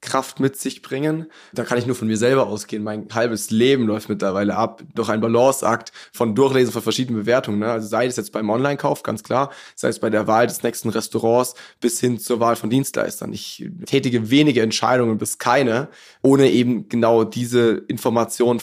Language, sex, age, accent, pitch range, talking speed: German, male, 20-39, German, 115-135 Hz, 195 wpm